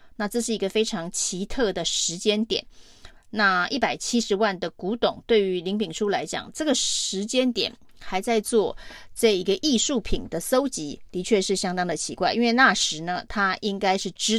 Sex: female